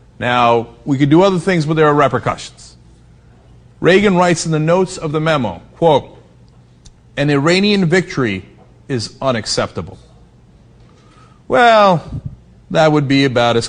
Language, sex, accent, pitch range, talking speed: English, male, American, 125-195 Hz, 130 wpm